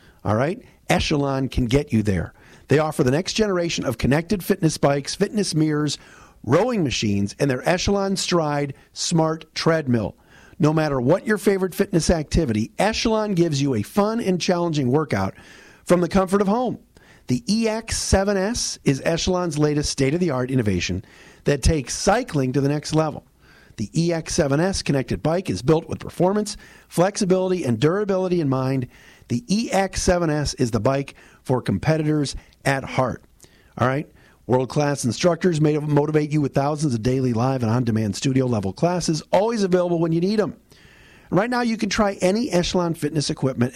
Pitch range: 130-185 Hz